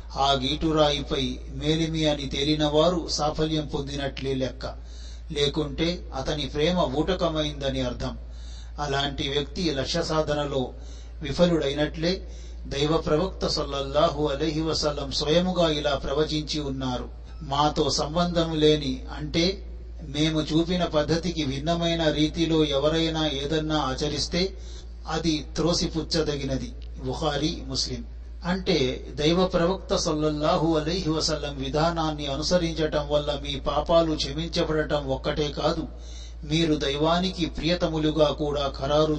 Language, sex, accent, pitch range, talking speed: Telugu, male, native, 135-155 Hz, 90 wpm